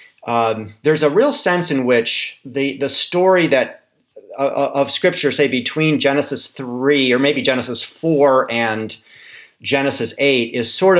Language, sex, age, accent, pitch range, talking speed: English, male, 40-59, American, 115-145 Hz, 145 wpm